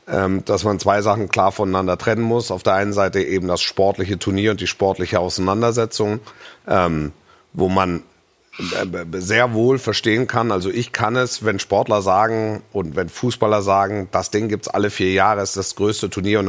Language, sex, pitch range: German, male, 95-120 Hz